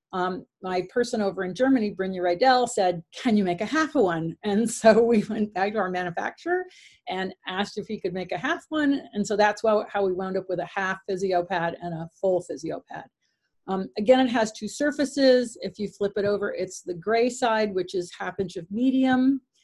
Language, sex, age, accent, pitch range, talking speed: English, female, 40-59, American, 190-240 Hz, 215 wpm